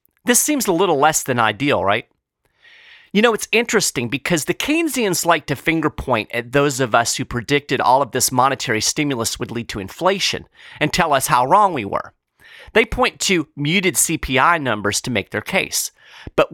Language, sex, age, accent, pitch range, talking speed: English, male, 40-59, American, 125-185 Hz, 190 wpm